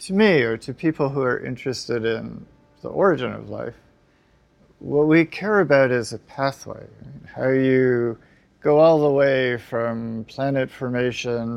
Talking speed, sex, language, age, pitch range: 150 wpm, male, English, 40-59, 120-145 Hz